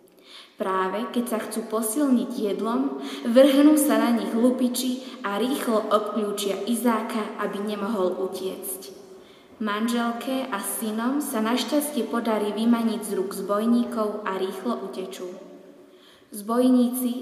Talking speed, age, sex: 110 wpm, 20-39, female